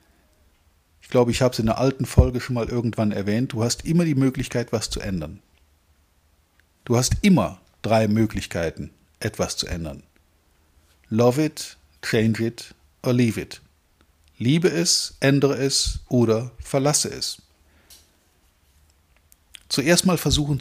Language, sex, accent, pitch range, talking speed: German, male, German, 90-130 Hz, 135 wpm